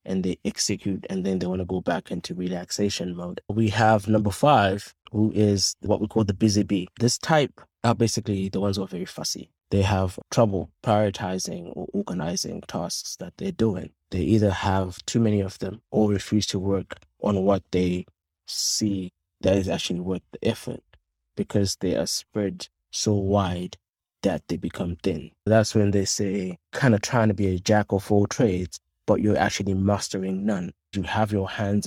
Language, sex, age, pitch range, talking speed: English, male, 20-39, 90-105 Hz, 185 wpm